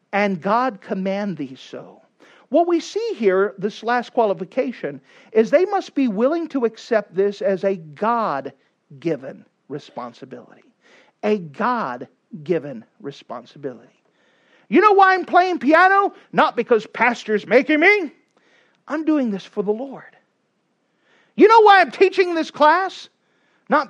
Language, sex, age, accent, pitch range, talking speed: English, male, 50-69, American, 205-315 Hz, 130 wpm